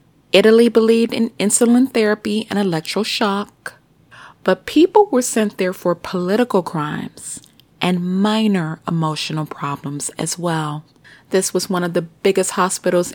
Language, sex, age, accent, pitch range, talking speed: English, female, 30-49, American, 160-220 Hz, 130 wpm